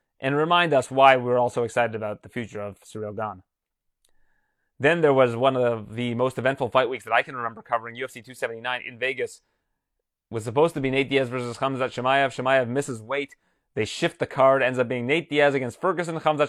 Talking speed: 215 wpm